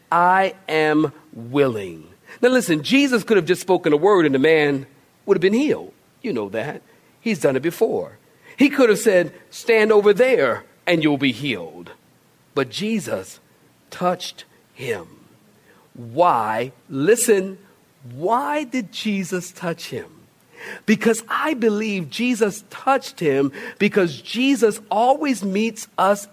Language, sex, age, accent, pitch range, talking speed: English, male, 50-69, American, 160-230 Hz, 135 wpm